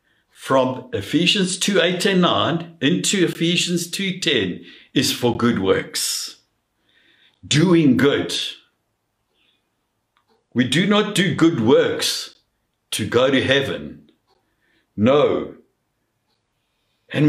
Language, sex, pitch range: English, male, 130-175 Hz